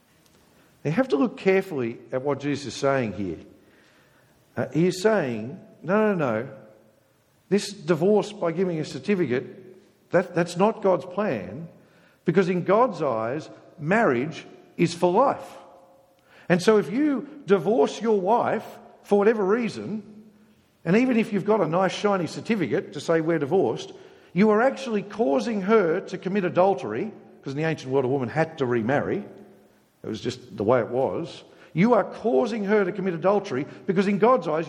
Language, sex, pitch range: English, male, 155-205 Hz